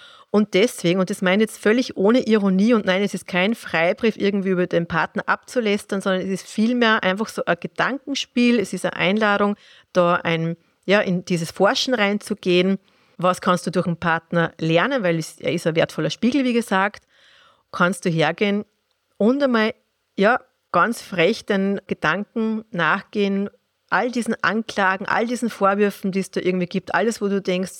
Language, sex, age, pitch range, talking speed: German, female, 30-49, 175-220 Hz, 175 wpm